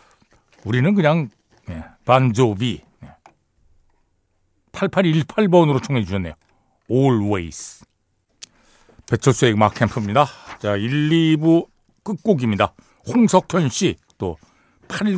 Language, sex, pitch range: Korean, male, 110-175 Hz